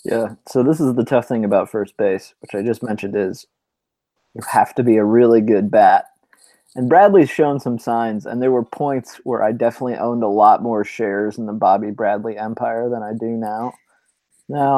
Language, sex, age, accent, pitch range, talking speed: English, male, 20-39, American, 110-125 Hz, 205 wpm